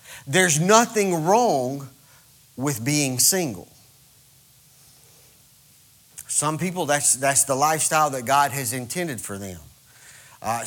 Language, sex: English, male